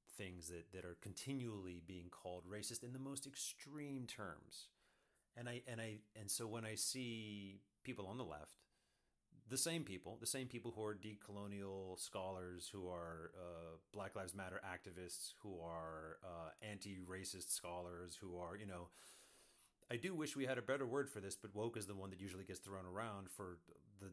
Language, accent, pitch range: English, American, 90-110 Hz